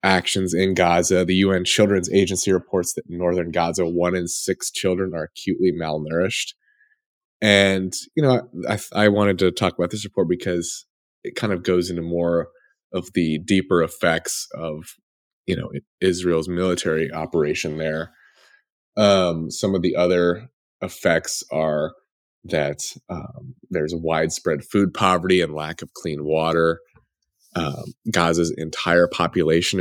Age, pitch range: 20-39, 80-95 Hz